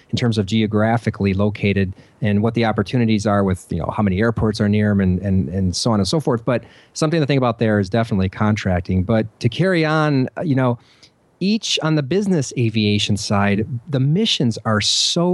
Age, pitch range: 30-49, 105-140 Hz